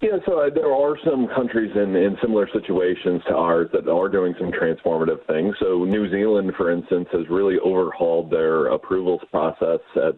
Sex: male